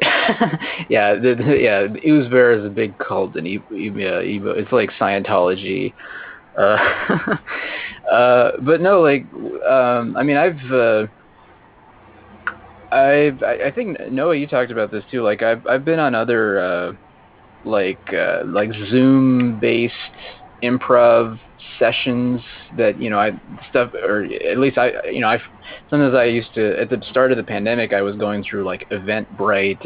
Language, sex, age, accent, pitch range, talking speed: English, male, 30-49, American, 105-140 Hz, 155 wpm